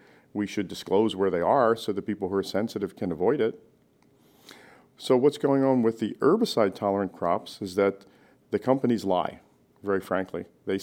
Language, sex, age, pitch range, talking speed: English, male, 40-59, 100-120 Hz, 170 wpm